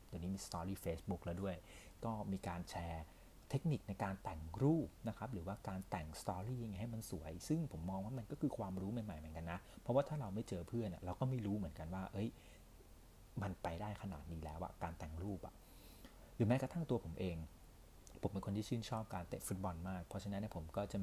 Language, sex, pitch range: Thai, male, 85-110 Hz